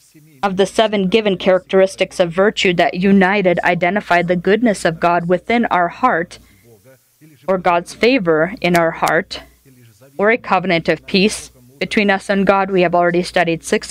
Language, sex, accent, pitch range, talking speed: English, female, American, 170-200 Hz, 160 wpm